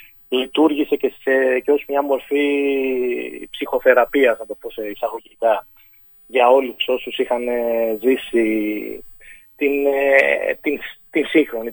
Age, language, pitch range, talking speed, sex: 20-39, English, 125-175 Hz, 115 wpm, male